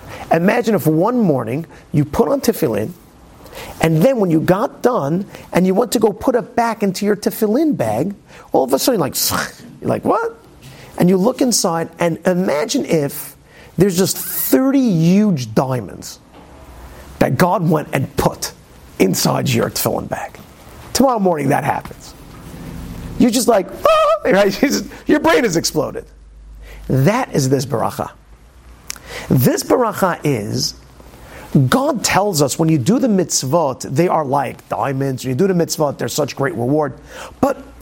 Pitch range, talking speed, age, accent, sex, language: 150-210 Hz, 155 wpm, 40-59, American, male, English